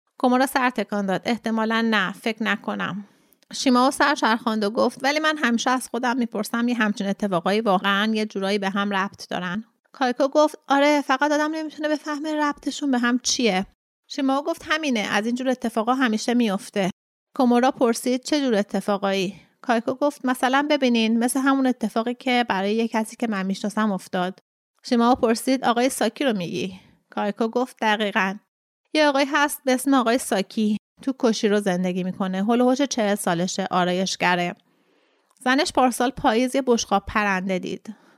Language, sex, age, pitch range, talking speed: Persian, female, 30-49, 200-260 Hz, 155 wpm